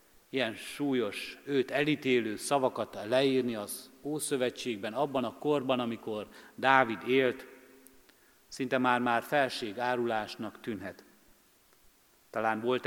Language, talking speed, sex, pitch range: Hungarian, 100 wpm, male, 115-135 Hz